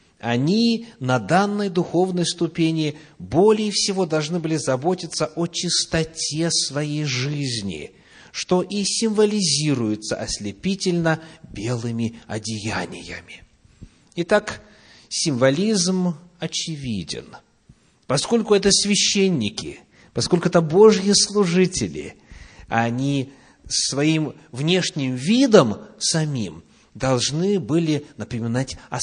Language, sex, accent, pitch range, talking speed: Russian, male, native, 115-175 Hz, 80 wpm